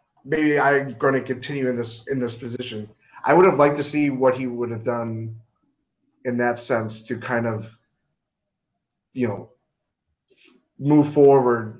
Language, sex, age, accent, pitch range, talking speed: English, male, 30-49, American, 115-145 Hz, 160 wpm